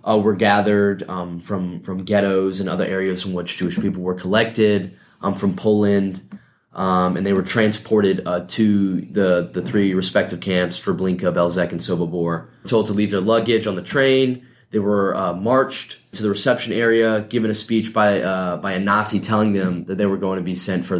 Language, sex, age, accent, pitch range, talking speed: English, male, 20-39, American, 95-110 Hz, 200 wpm